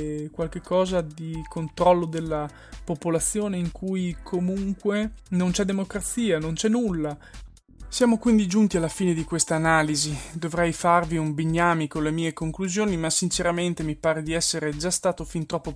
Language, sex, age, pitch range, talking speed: Italian, male, 20-39, 150-180 Hz, 155 wpm